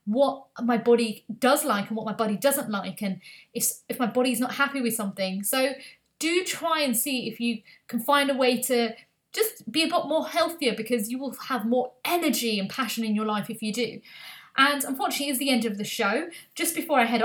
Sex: female